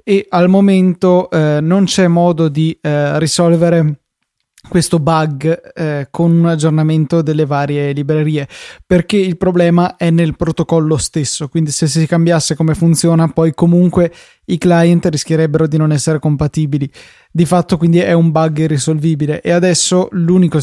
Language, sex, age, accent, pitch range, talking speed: Italian, male, 20-39, native, 150-170 Hz, 150 wpm